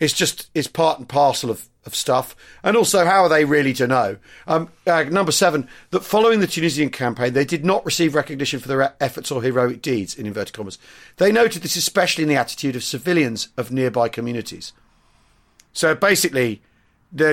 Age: 40-59